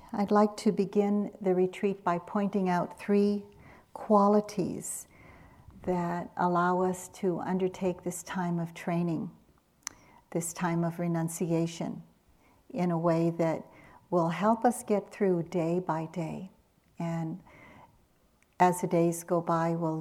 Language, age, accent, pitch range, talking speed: English, 60-79, American, 170-200 Hz, 130 wpm